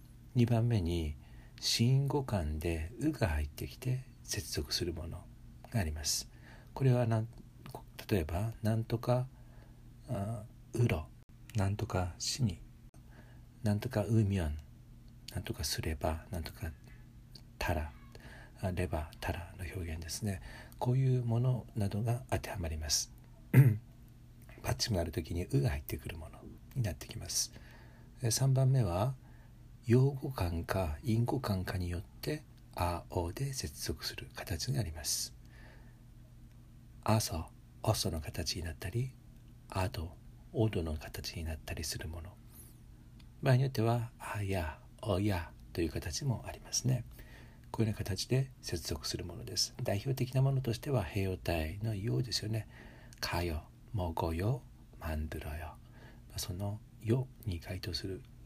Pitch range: 90-120 Hz